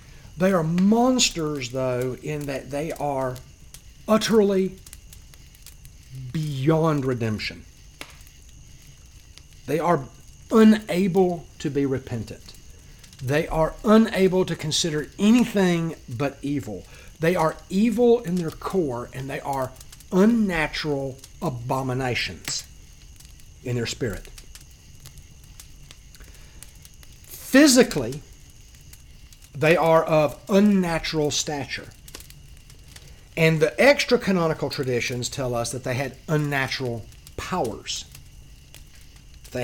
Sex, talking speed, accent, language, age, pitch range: male, 85 wpm, American, English, 50-69, 110-165 Hz